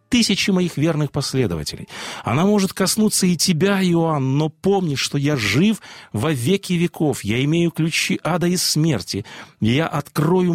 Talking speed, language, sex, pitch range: 150 wpm, Russian, male, 115-170 Hz